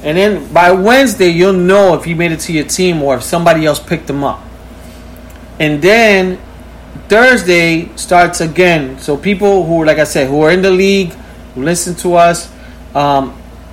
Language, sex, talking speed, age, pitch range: English, male, 180 wpm, 30-49, 145-190 Hz